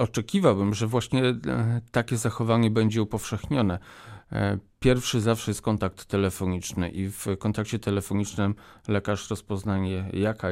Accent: native